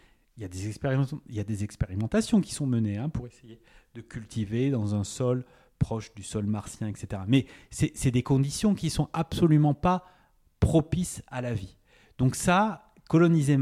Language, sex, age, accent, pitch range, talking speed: French, male, 30-49, French, 110-160 Hz, 185 wpm